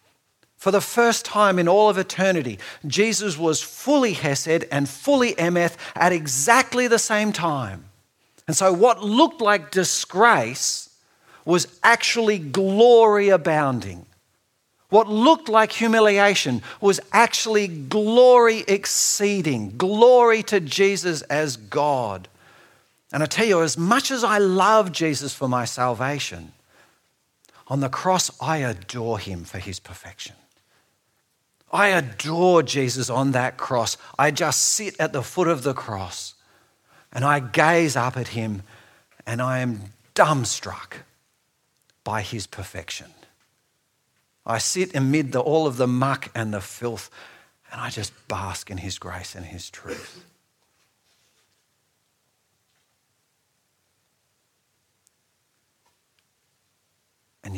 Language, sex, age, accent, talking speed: English, male, 50-69, Australian, 120 wpm